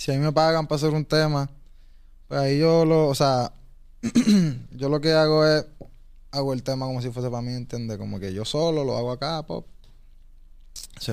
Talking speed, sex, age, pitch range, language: 205 wpm, male, 20-39, 115-145 Hz, Spanish